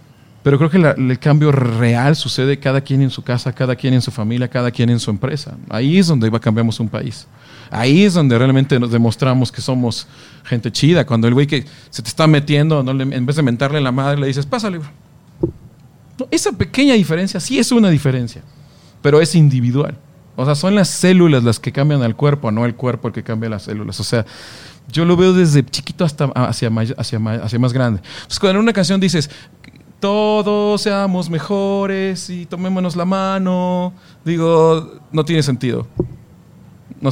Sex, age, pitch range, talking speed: male, 40-59, 125-160 Hz, 190 wpm